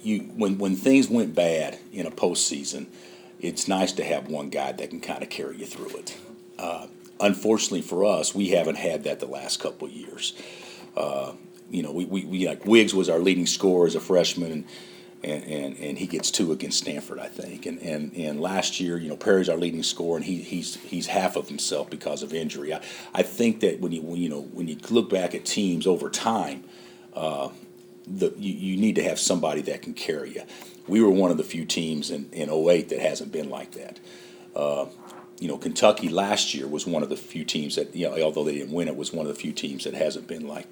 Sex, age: male, 50-69